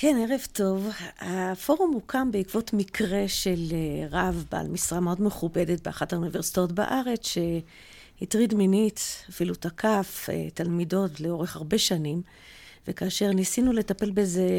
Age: 50-69